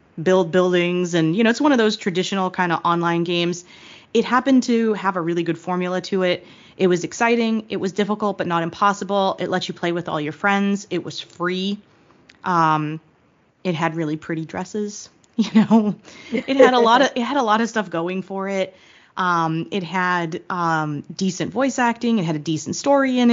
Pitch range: 170-225 Hz